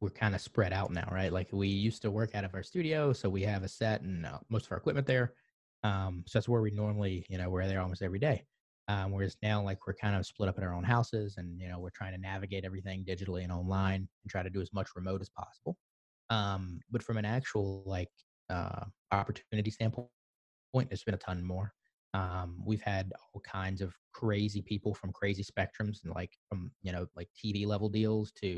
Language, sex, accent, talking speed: English, male, American, 230 wpm